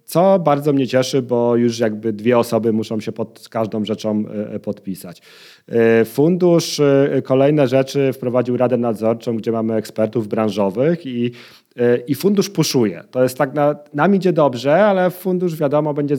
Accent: native